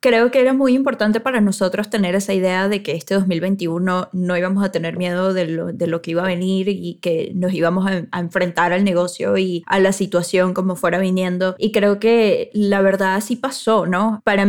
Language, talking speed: Spanish, 220 wpm